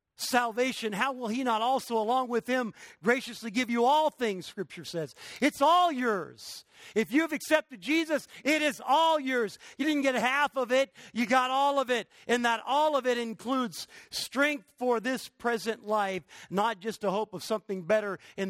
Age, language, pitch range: 50-69, English, 140-230 Hz